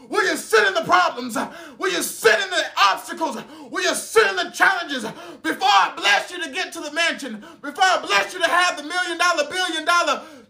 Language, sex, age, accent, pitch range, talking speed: English, male, 30-49, American, 270-350 Hz, 215 wpm